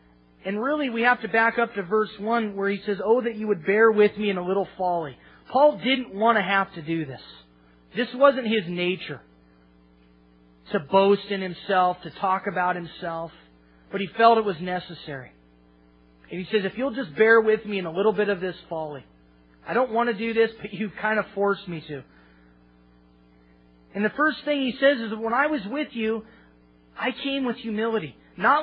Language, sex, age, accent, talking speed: English, male, 30-49, American, 200 wpm